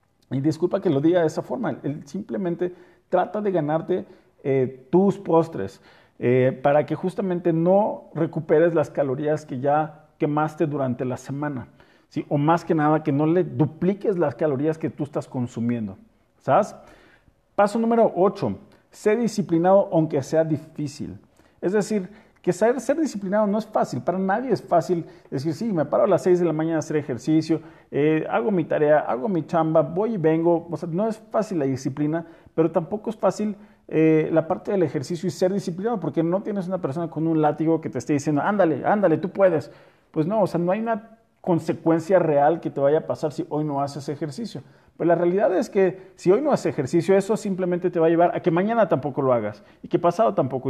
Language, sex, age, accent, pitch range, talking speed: Spanish, male, 40-59, Mexican, 155-190 Hz, 200 wpm